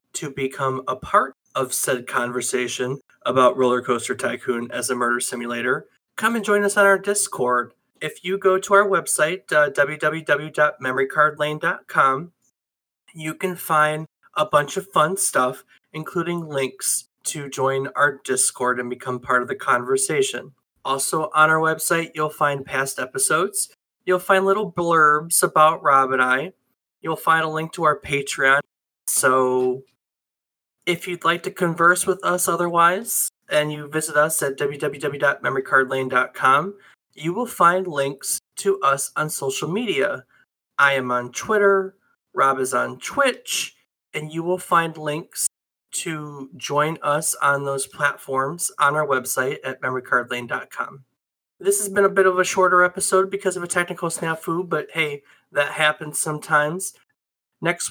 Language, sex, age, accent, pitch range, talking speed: English, male, 20-39, American, 135-180 Hz, 145 wpm